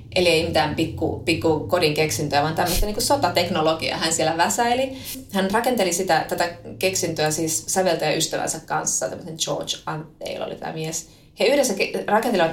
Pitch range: 160-210 Hz